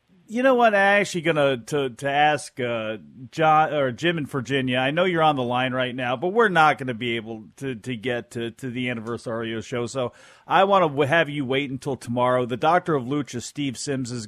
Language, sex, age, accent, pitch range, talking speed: English, male, 40-59, American, 120-150 Hz, 230 wpm